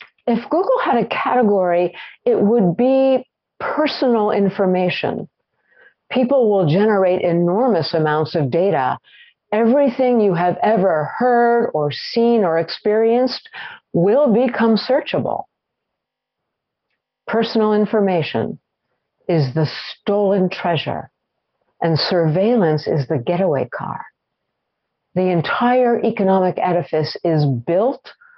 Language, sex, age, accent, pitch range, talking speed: English, female, 50-69, American, 165-225 Hz, 100 wpm